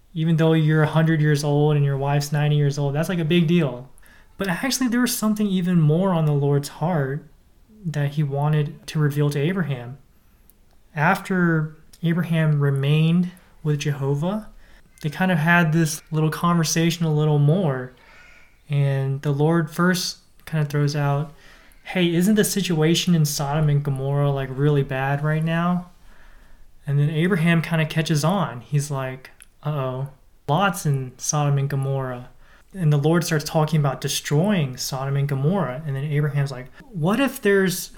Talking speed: 165 wpm